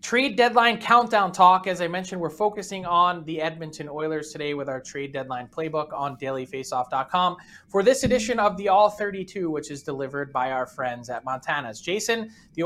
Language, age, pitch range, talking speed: English, 20-39, 160-205 Hz, 180 wpm